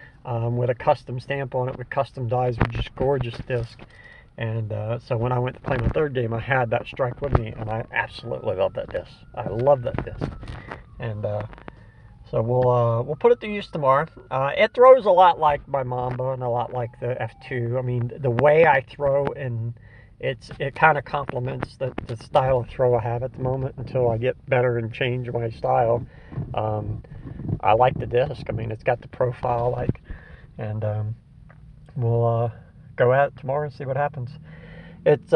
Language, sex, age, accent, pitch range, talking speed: English, male, 50-69, American, 120-145 Hz, 205 wpm